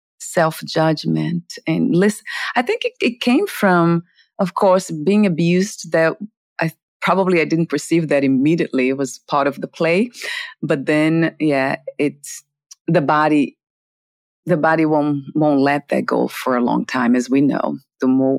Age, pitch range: 30-49, 140-190 Hz